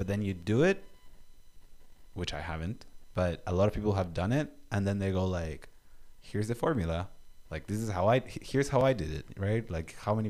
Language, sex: English, male